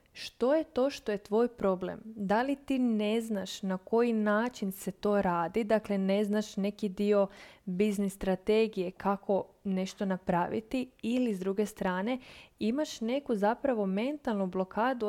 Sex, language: female, Croatian